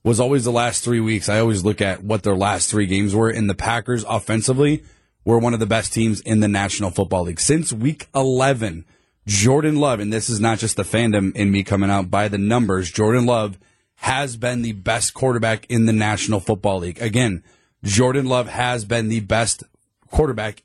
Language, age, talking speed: English, 30-49, 205 wpm